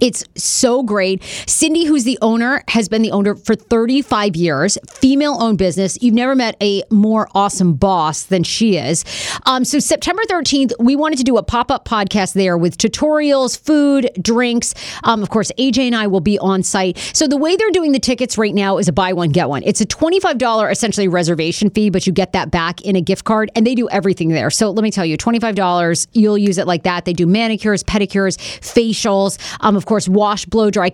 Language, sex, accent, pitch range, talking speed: English, female, American, 190-250 Hz, 210 wpm